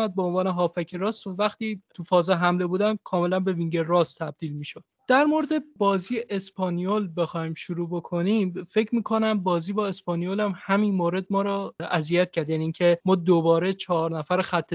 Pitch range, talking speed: 165-195 Hz, 170 wpm